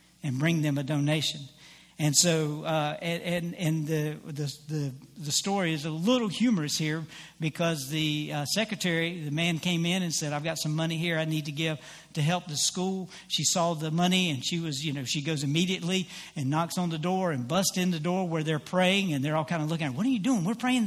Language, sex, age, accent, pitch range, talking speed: English, male, 60-79, American, 165-260 Hz, 235 wpm